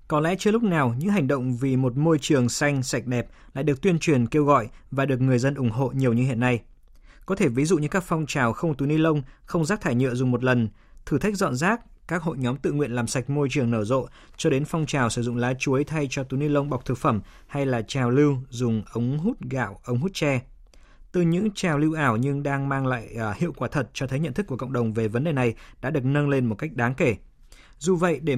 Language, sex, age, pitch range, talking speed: Vietnamese, male, 20-39, 120-155 Hz, 265 wpm